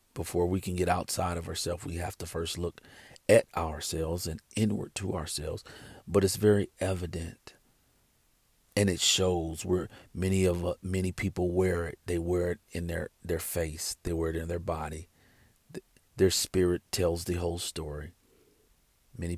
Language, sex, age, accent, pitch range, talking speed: English, male, 40-59, American, 85-95 Hz, 165 wpm